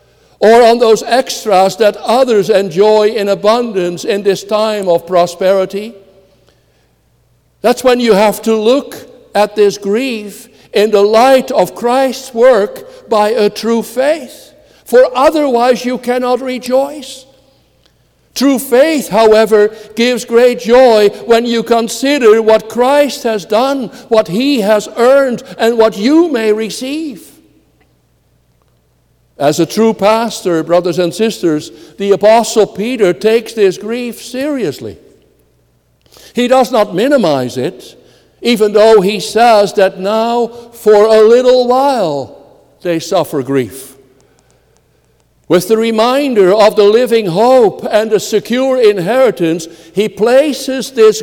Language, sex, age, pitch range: English, male, 60-79, 200-250 Hz